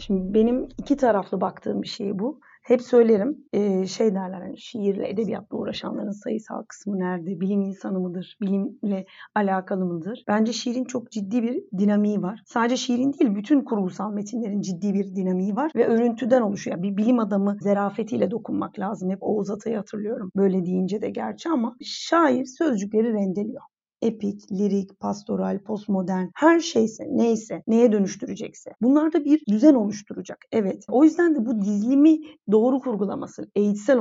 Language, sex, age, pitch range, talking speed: Turkish, female, 40-59, 200-255 Hz, 150 wpm